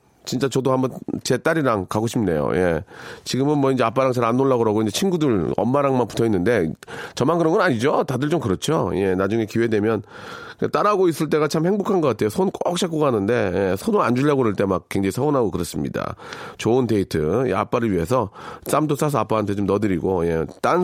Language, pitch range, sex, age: Korean, 115-155 Hz, male, 40-59